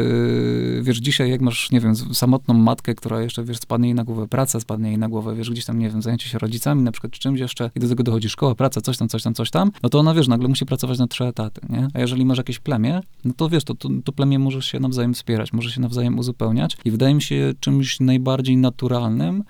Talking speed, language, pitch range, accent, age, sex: 250 wpm, Polish, 115-135 Hz, native, 20-39, male